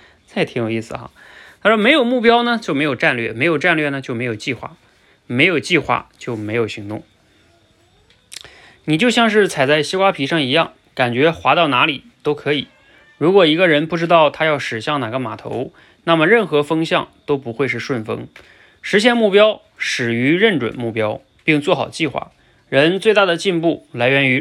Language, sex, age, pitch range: Chinese, male, 20-39, 120-170 Hz